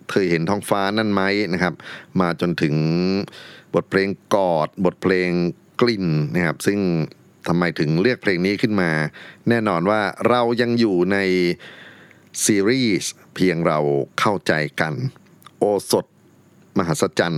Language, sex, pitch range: Thai, male, 80-100 Hz